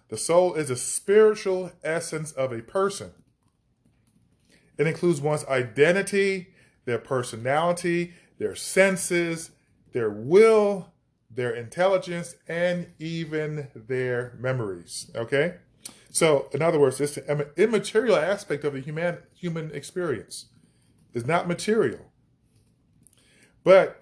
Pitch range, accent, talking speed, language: 130-180 Hz, American, 105 wpm, English